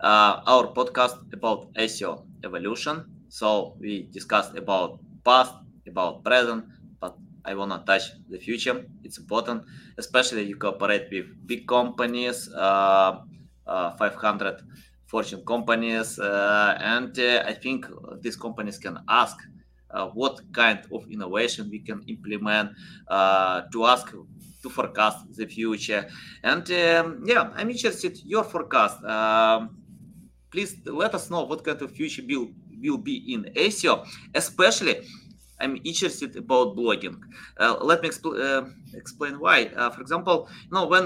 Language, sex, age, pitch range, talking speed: English, male, 20-39, 110-165 Hz, 135 wpm